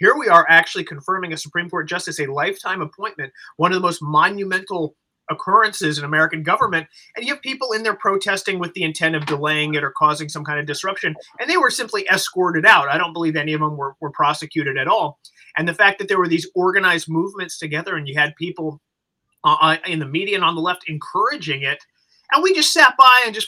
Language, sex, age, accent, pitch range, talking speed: English, male, 30-49, American, 155-195 Hz, 225 wpm